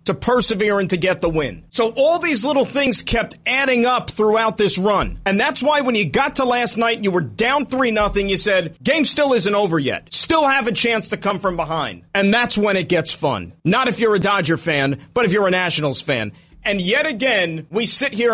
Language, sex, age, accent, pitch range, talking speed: English, male, 40-59, American, 165-230 Hz, 235 wpm